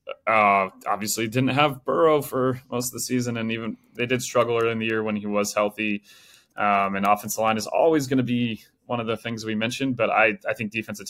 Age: 20-39